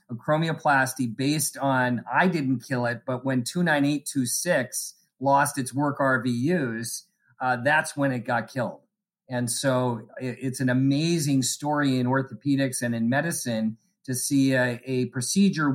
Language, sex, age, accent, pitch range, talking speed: English, male, 40-59, American, 130-165 Hz, 135 wpm